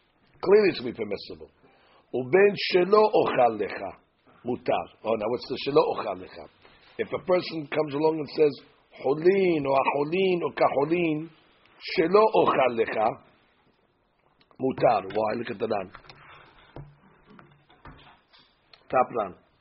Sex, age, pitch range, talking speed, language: male, 50-69, 125-190 Hz, 105 wpm, English